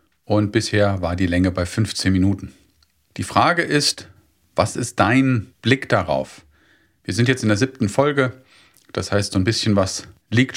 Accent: German